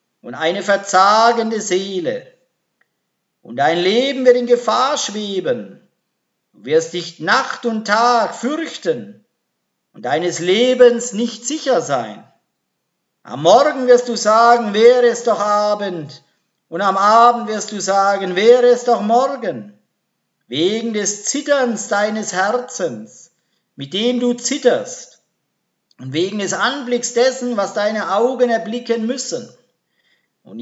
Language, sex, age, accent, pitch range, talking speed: German, male, 50-69, German, 205-245 Hz, 125 wpm